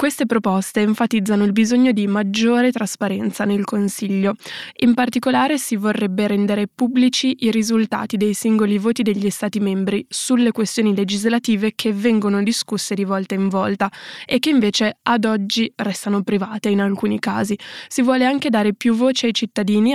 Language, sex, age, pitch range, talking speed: Italian, female, 10-29, 205-230 Hz, 155 wpm